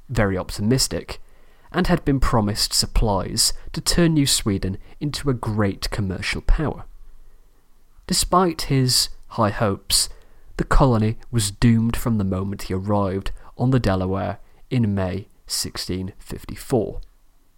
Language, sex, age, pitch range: English, male, 30-49, 100-130 Hz